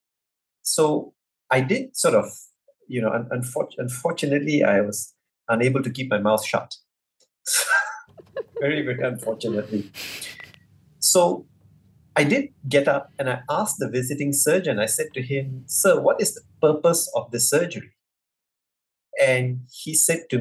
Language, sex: English, male